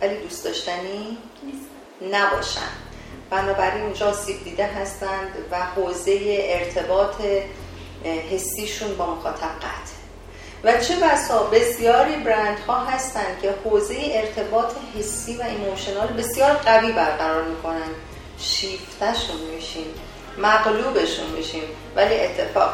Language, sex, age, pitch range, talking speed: Persian, female, 40-59, 170-215 Hz, 100 wpm